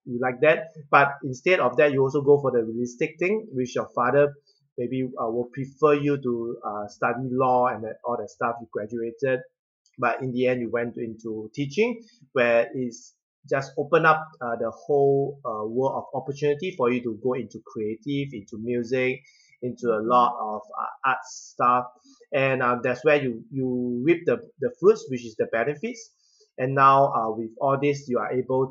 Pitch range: 120-145 Hz